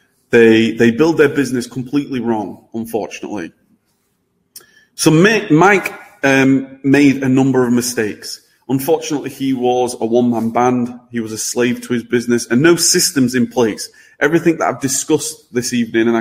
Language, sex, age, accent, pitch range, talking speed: English, male, 30-49, British, 120-145 Hz, 155 wpm